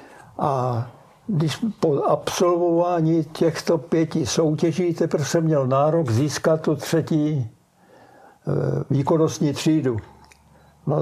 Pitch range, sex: 145-165 Hz, male